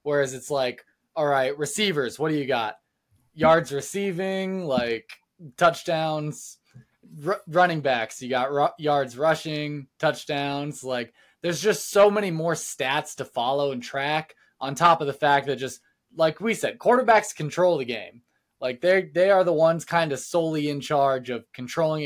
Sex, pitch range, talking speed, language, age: male, 135-190 Hz, 165 wpm, English, 20-39